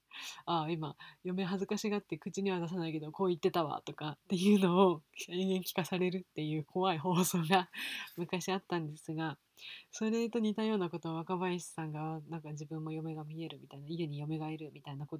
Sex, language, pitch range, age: female, Japanese, 155-195 Hz, 20-39